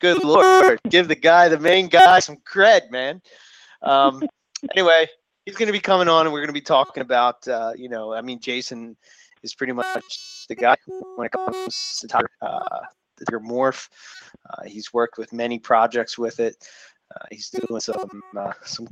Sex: male